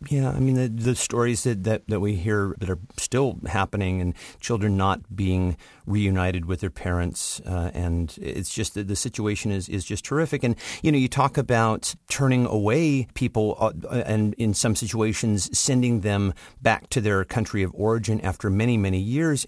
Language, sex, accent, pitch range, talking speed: English, male, American, 95-125 Hz, 180 wpm